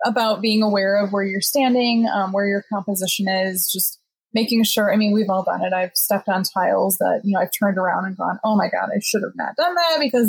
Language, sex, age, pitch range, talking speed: English, female, 20-39, 195-225 Hz, 250 wpm